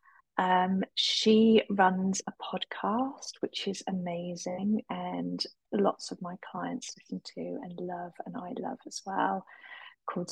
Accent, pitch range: British, 180-245 Hz